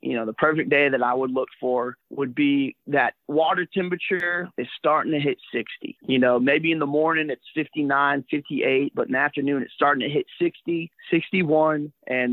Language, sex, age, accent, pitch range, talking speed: English, male, 30-49, American, 130-165 Hz, 195 wpm